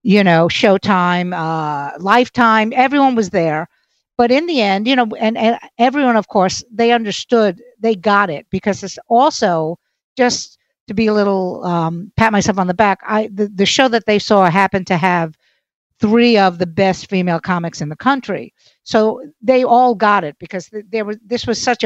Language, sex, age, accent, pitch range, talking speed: English, female, 60-79, American, 180-230 Hz, 185 wpm